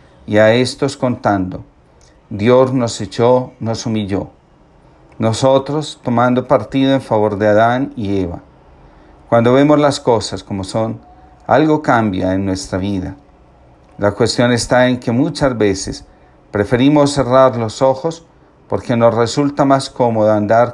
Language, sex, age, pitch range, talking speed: Spanish, male, 40-59, 100-130 Hz, 135 wpm